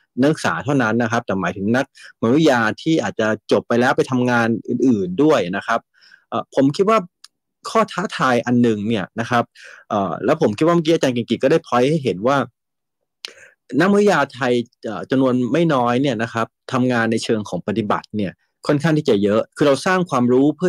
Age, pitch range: 30-49, 115-155 Hz